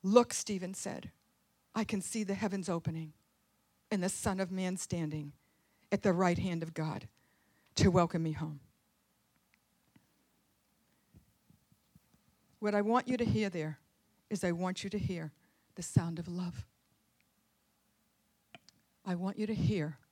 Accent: American